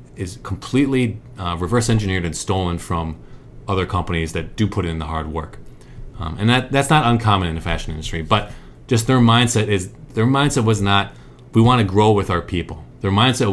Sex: male